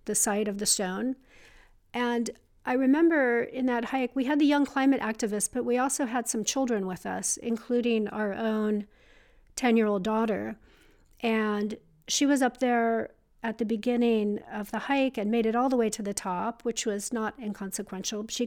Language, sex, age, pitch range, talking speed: English, female, 50-69, 210-245 Hz, 180 wpm